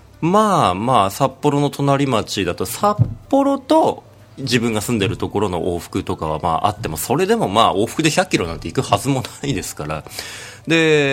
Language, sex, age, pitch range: Japanese, male, 30-49, 95-155 Hz